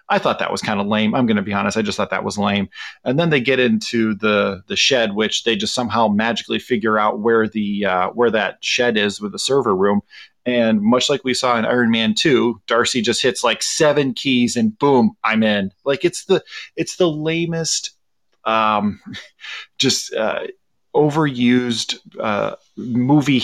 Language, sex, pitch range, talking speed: English, male, 110-155 Hz, 190 wpm